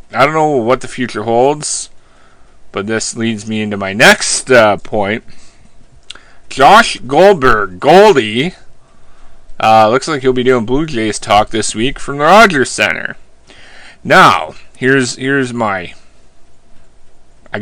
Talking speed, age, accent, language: 135 wpm, 30-49, American, English